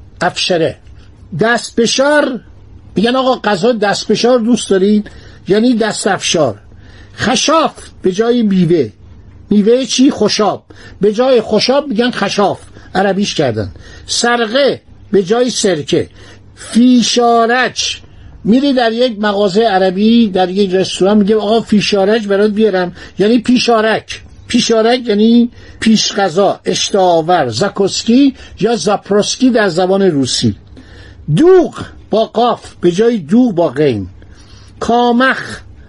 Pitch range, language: 165-235 Hz, Persian